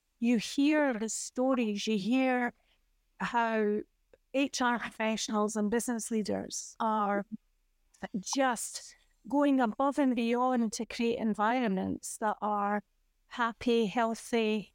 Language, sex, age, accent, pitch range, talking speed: English, female, 30-49, British, 210-260 Hz, 100 wpm